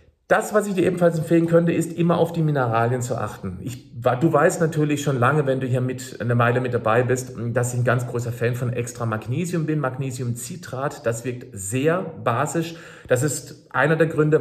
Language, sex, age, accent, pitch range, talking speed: German, male, 40-59, German, 120-155 Hz, 200 wpm